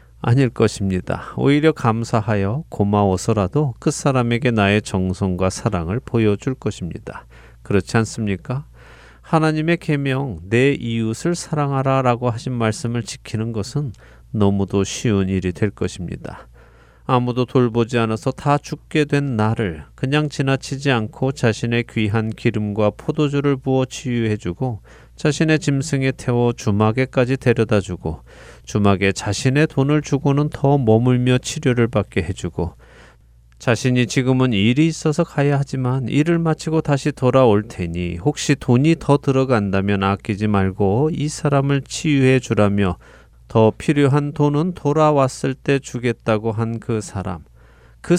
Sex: male